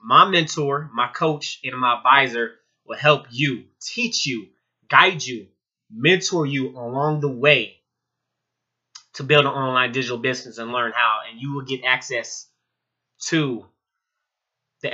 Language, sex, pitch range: English, male, 120-140 Hz